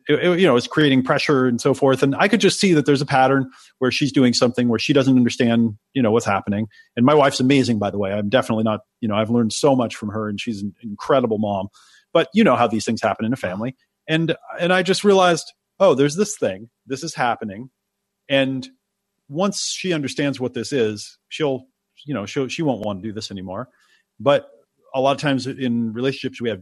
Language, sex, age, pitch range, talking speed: English, male, 40-59, 115-160 Hz, 230 wpm